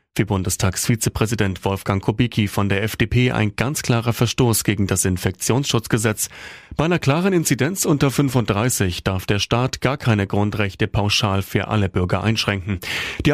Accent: German